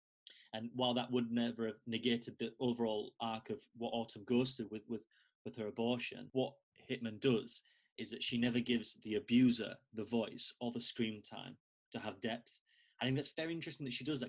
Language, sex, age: English, male, 20-39